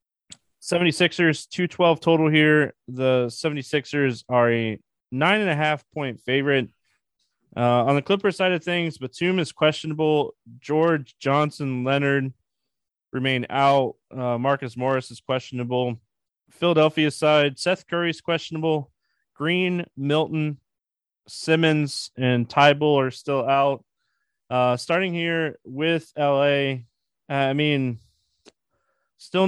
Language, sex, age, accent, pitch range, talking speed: English, male, 20-39, American, 125-160 Hz, 115 wpm